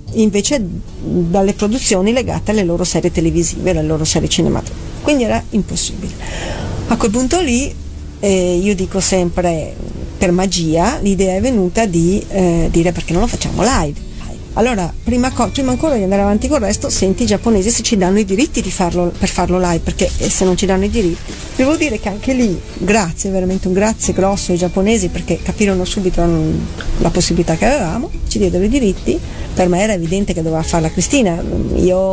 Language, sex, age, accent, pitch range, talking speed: Italian, female, 40-59, native, 170-210 Hz, 180 wpm